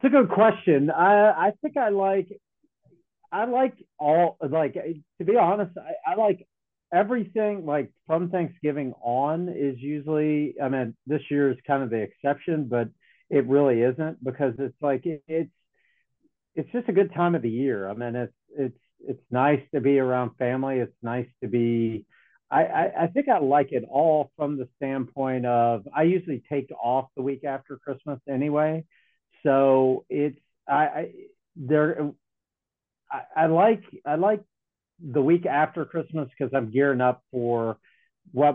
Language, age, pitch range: English, 40-59, 125-160 Hz